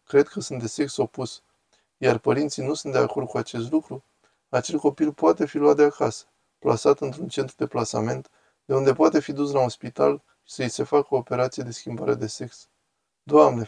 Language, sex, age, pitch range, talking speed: Romanian, male, 20-39, 110-145 Hz, 200 wpm